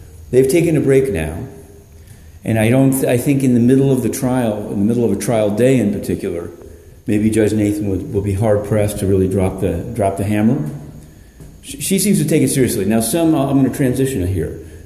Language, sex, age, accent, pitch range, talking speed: English, male, 50-69, American, 95-130 Hz, 215 wpm